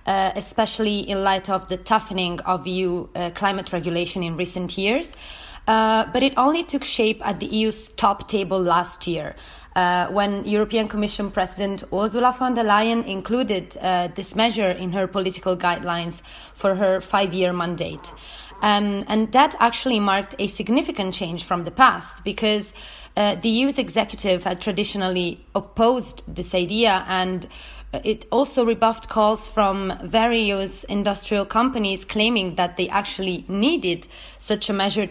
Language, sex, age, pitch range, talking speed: English, female, 20-39, 185-220 Hz, 150 wpm